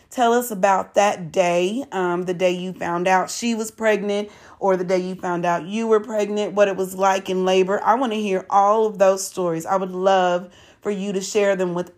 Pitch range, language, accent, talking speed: 190-230 Hz, English, American, 230 wpm